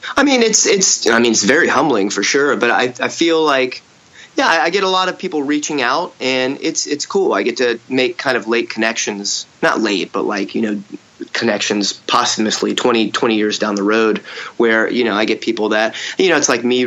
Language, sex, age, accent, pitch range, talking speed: English, male, 30-49, American, 105-135 Hz, 225 wpm